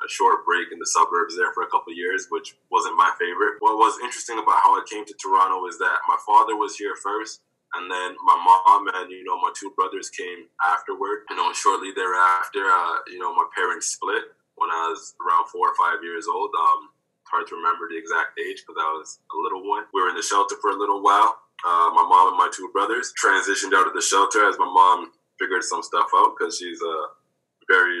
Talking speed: 225 wpm